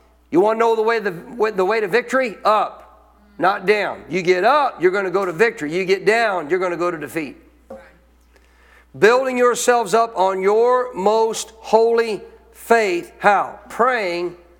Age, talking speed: 50-69, 170 wpm